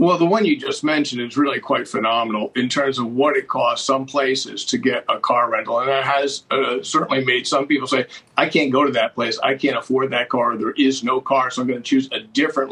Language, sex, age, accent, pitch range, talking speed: English, male, 50-69, American, 125-165 Hz, 255 wpm